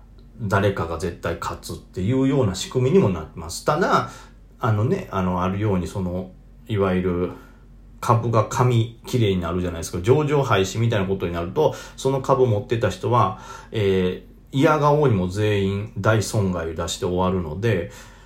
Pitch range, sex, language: 95-130 Hz, male, Japanese